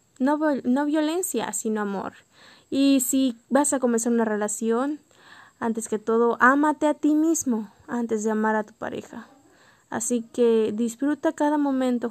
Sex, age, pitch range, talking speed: female, 20-39, 225-255 Hz, 155 wpm